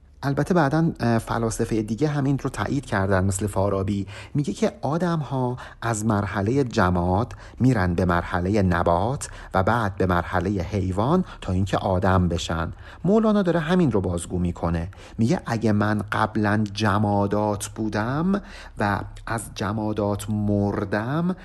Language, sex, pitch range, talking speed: Persian, male, 100-155 Hz, 130 wpm